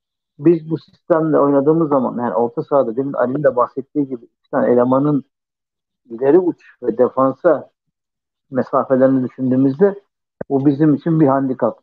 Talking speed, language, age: 135 wpm, Turkish, 60-79